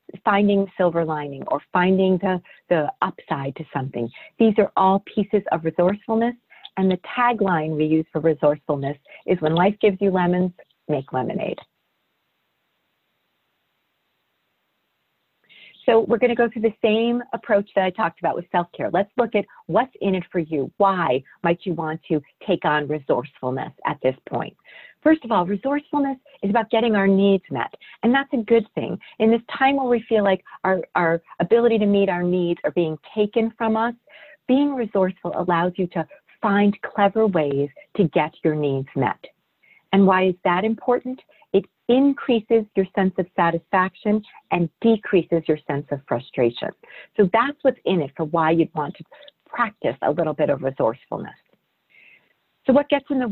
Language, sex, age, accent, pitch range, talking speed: English, female, 40-59, American, 165-230 Hz, 170 wpm